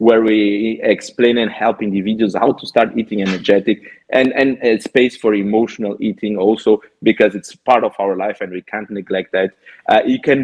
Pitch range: 105-120 Hz